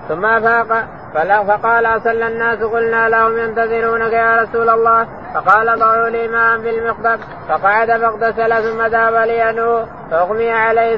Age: 20-39